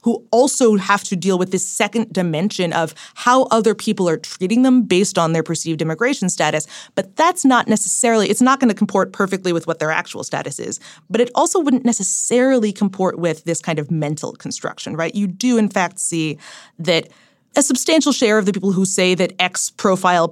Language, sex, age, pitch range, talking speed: English, female, 20-39, 175-220 Hz, 200 wpm